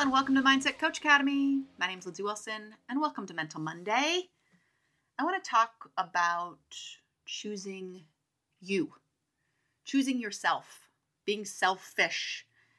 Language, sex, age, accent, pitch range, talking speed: English, female, 30-49, American, 185-270 Hz, 125 wpm